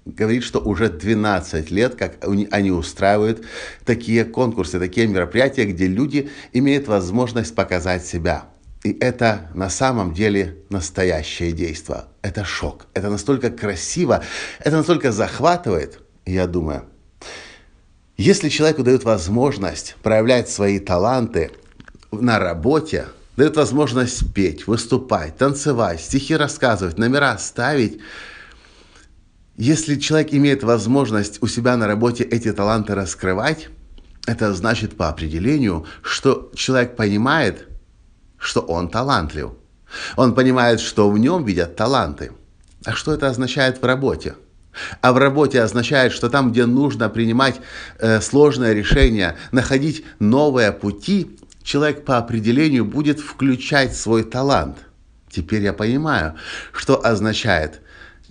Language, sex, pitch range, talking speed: Russian, male, 95-130 Hz, 115 wpm